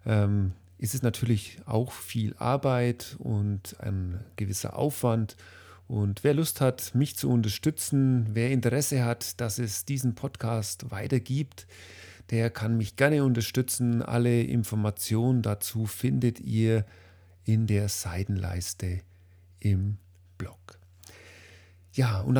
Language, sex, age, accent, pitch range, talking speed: German, male, 40-59, German, 95-130 Hz, 115 wpm